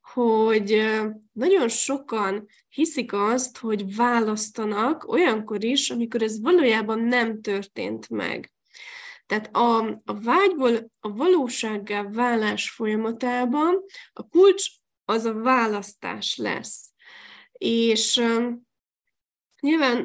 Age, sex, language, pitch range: 10-29, female, Hungarian, 220-265 Hz